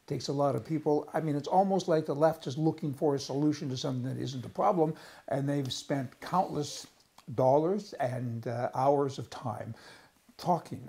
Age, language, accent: 60-79, English, American